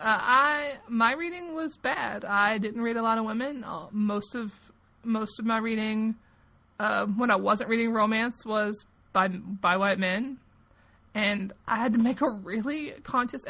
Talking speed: 170 wpm